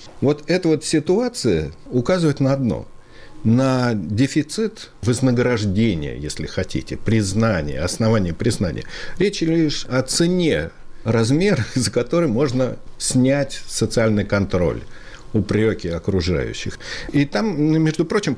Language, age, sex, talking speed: Russian, 60-79, male, 105 wpm